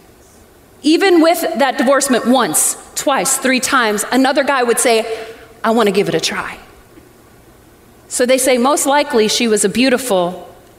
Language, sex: English, female